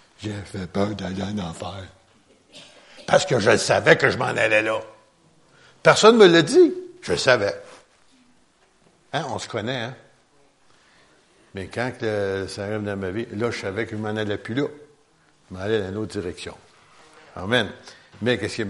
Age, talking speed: 60-79, 180 wpm